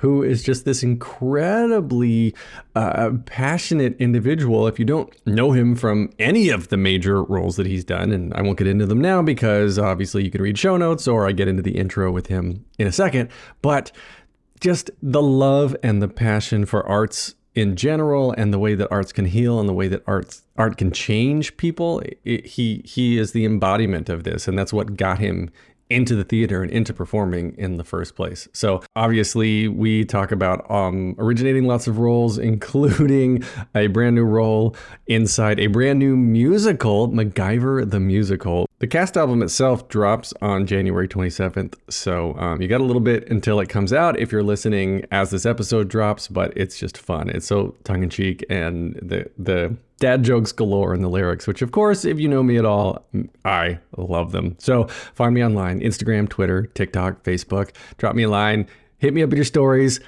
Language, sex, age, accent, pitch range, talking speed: English, male, 30-49, American, 95-125 Hz, 190 wpm